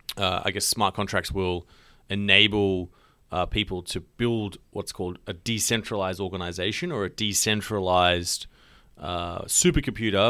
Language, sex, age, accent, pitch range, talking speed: English, male, 30-49, Australian, 95-120 Hz, 120 wpm